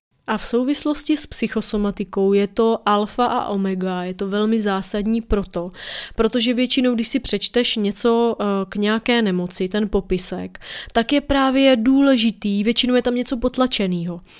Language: Czech